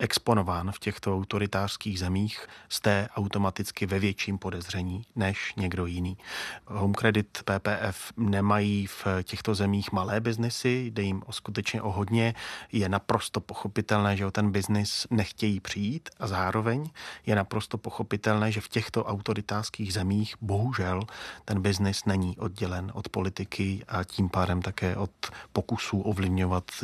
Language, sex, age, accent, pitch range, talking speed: Czech, male, 30-49, native, 95-110 Hz, 130 wpm